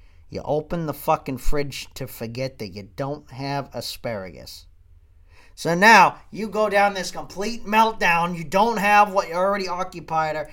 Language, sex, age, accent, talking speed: English, male, 40-59, American, 155 wpm